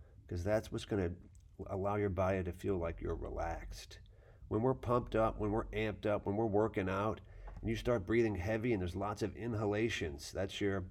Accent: American